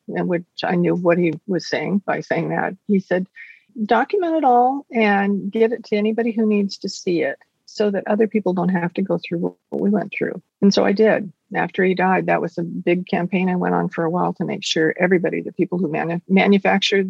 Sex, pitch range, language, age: female, 175-210 Hz, English, 50-69